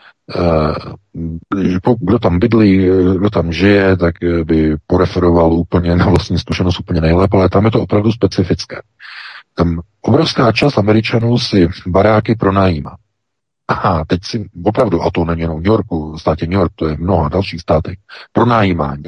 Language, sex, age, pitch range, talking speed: Czech, male, 50-69, 90-120 Hz, 150 wpm